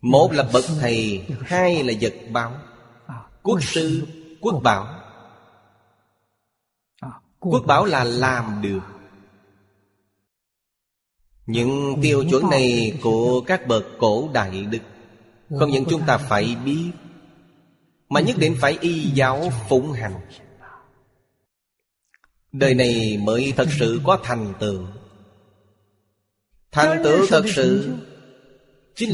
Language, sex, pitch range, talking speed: Vietnamese, male, 105-140 Hz, 110 wpm